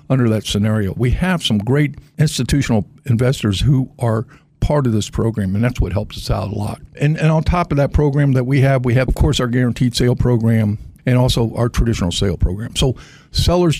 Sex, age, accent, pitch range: male, 60-79, American, 115-150 Hz